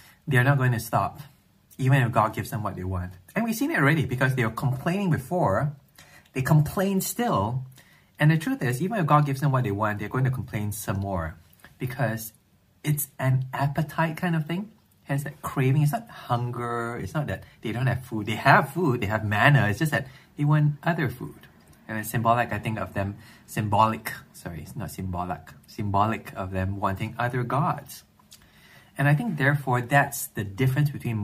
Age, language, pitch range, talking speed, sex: 20-39, English, 105-145 Hz, 200 wpm, male